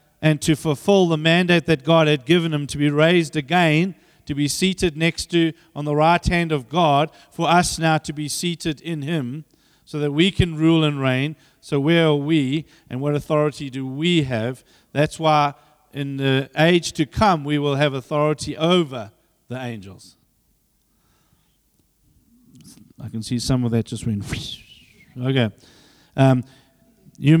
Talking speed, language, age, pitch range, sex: 165 wpm, English, 40-59, 140-165 Hz, male